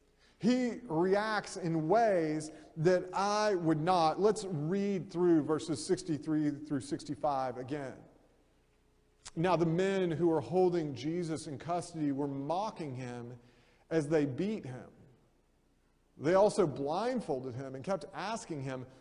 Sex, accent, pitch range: male, American, 145-190 Hz